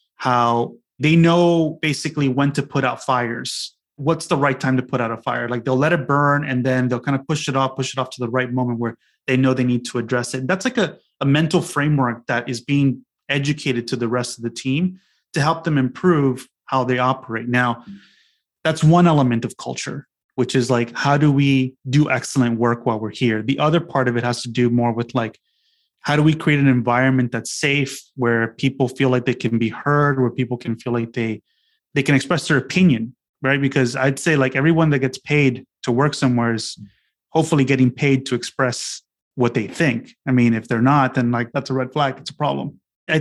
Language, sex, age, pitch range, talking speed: English, male, 30-49, 125-145 Hz, 225 wpm